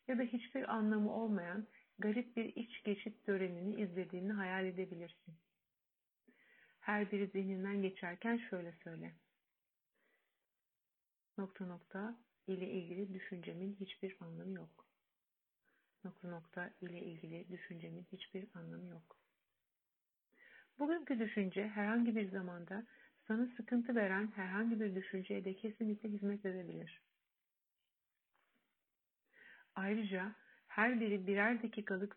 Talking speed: 105 wpm